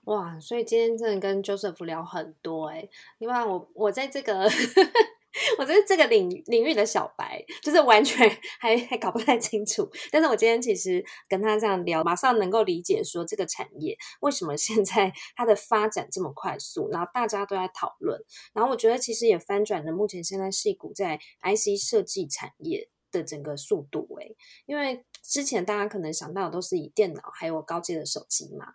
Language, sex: Chinese, female